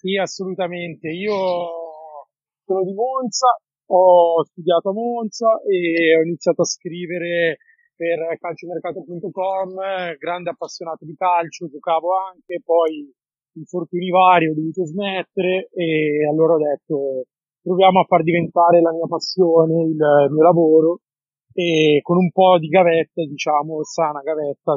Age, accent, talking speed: 30-49, native, 125 wpm